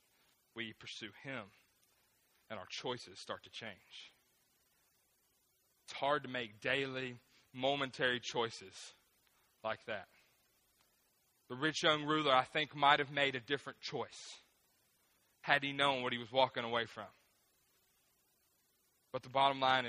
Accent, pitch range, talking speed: American, 125-180 Hz, 130 wpm